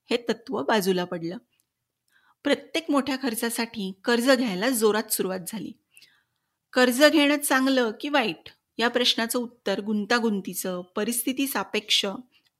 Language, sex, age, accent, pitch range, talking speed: Marathi, female, 30-49, native, 210-255 Hz, 105 wpm